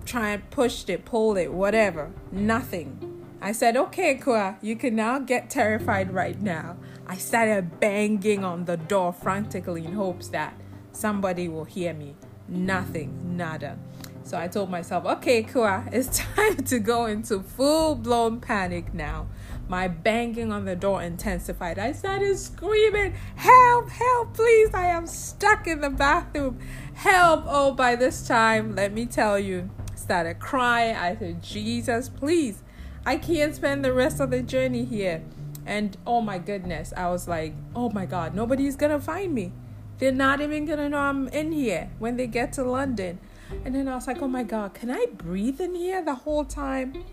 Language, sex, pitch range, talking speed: English, female, 180-280 Hz, 175 wpm